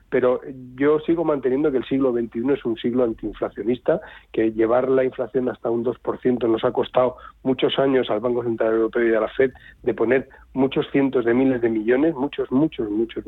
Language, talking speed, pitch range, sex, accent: Spanish, 195 wpm, 120-140 Hz, male, Spanish